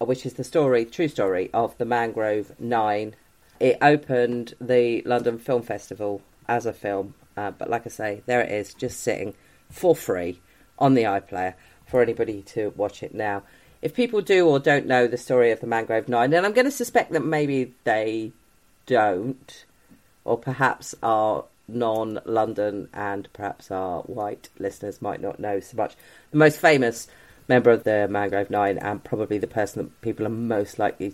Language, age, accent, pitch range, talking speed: English, 30-49, British, 105-125 Hz, 175 wpm